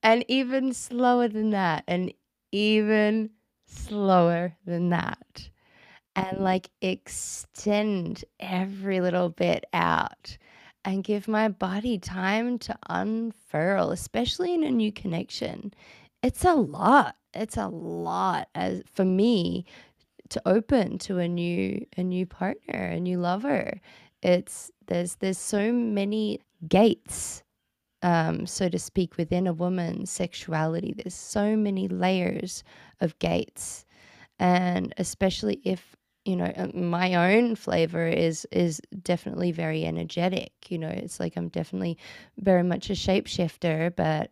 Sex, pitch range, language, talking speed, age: female, 170-215 Hz, English, 125 wpm, 20-39